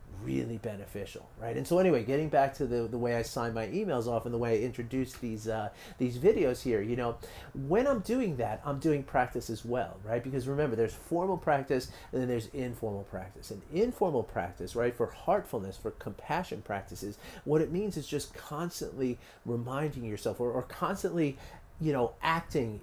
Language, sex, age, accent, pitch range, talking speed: English, male, 40-59, American, 115-155 Hz, 190 wpm